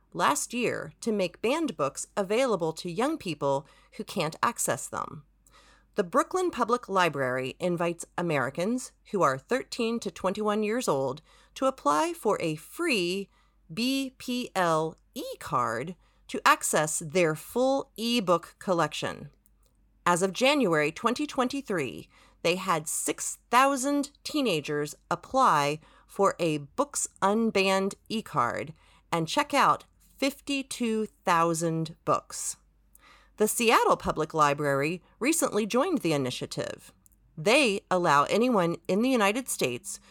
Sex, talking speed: female, 110 wpm